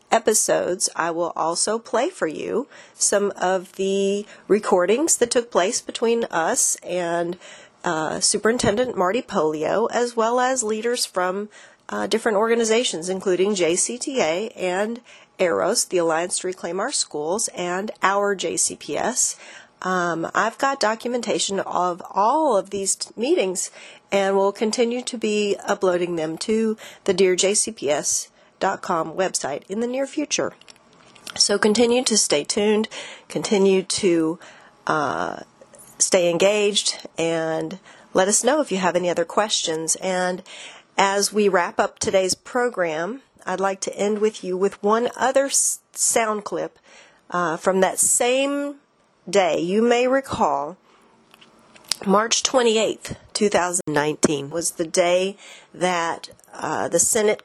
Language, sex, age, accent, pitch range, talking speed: English, female, 40-59, American, 180-225 Hz, 130 wpm